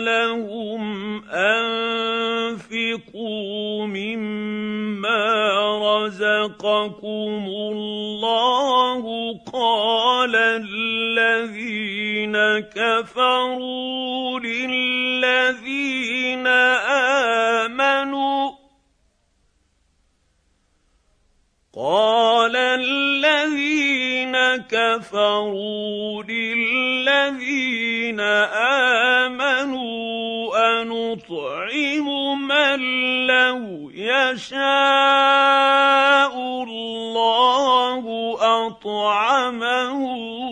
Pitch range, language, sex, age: 210-255 Hz, Arabic, male, 50-69